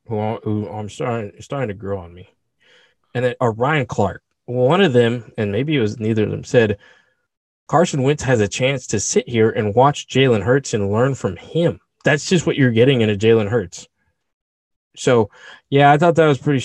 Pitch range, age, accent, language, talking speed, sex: 110-145 Hz, 20-39, American, English, 200 wpm, male